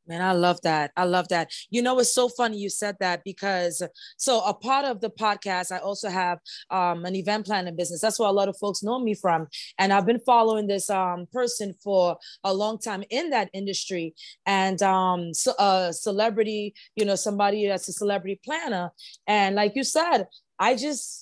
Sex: female